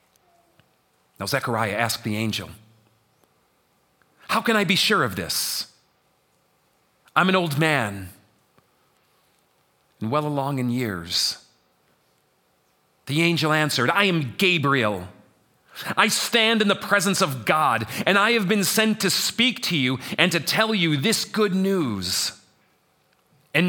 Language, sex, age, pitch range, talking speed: English, male, 40-59, 110-170 Hz, 130 wpm